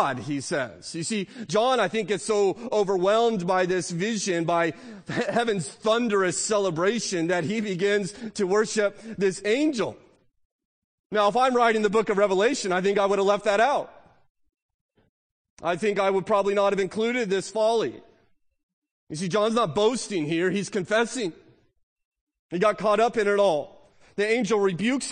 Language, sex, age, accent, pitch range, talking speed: English, male, 30-49, American, 190-220 Hz, 160 wpm